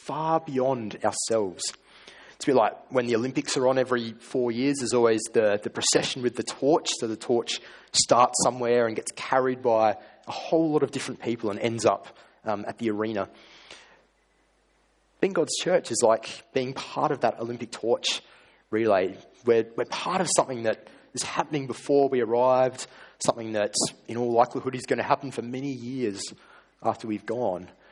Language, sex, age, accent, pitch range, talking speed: English, male, 20-39, Australian, 110-135 Hz, 180 wpm